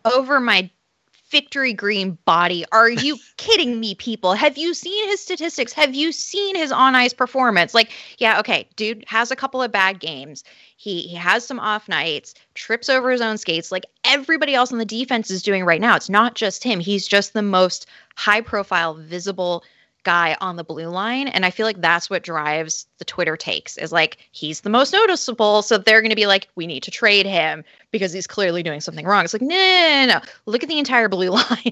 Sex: female